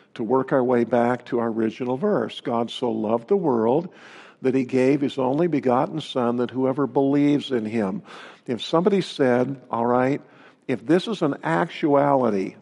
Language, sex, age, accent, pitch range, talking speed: English, male, 50-69, American, 130-155 Hz, 170 wpm